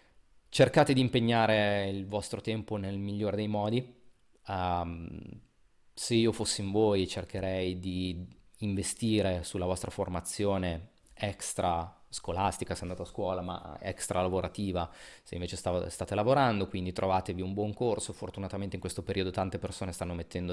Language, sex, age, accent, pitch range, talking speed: Italian, male, 30-49, native, 90-105 Hz, 145 wpm